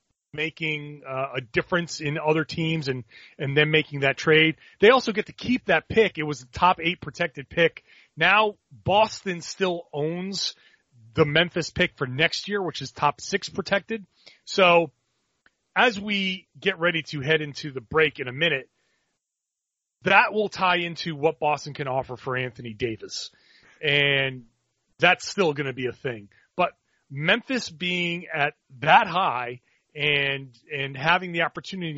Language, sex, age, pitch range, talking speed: English, male, 30-49, 140-175 Hz, 155 wpm